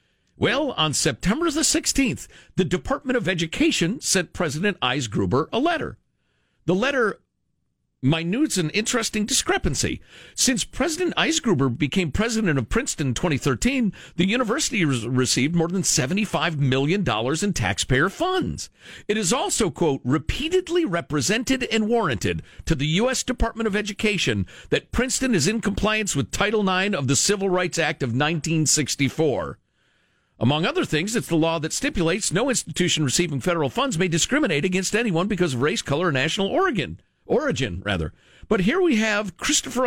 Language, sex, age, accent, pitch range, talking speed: English, male, 50-69, American, 155-235 Hz, 145 wpm